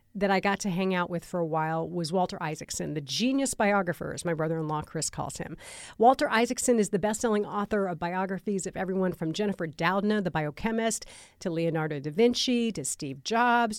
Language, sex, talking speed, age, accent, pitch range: English, female, 190 wpm, 40-59, American, 175-240 Hz